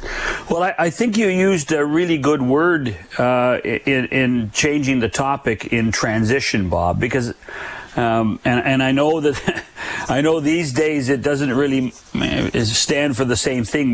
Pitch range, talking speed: 125-150 Hz, 165 wpm